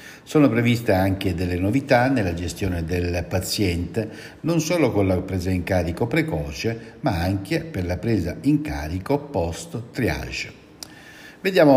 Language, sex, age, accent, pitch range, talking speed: Italian, male, 60-79, native, 95-130 Hz, 135 wpm